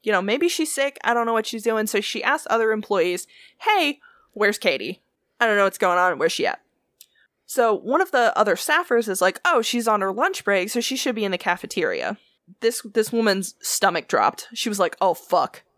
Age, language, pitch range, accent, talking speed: 20-39, English, 195-250 Hz, American, 225 wpm